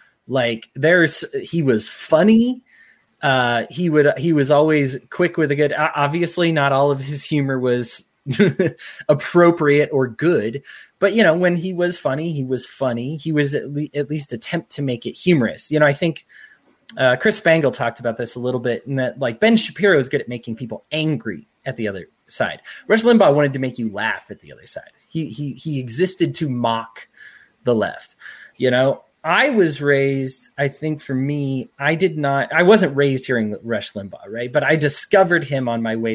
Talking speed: 200 wpm